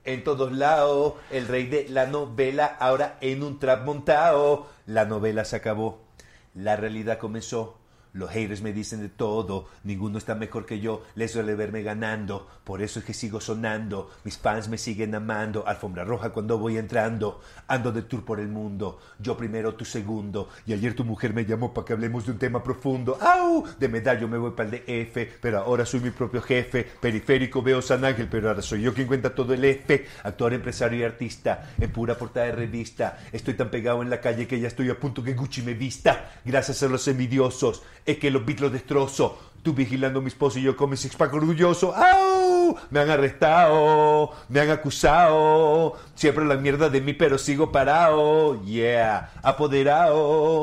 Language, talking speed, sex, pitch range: Spanish, 190 wpm, male, 115-145 Hz